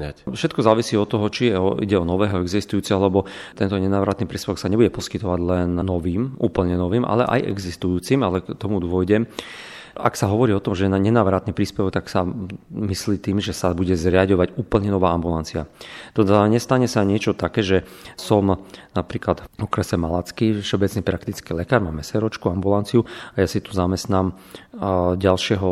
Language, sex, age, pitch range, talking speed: Slovak, male, 40-59, 90-105 Hz, 165 wpm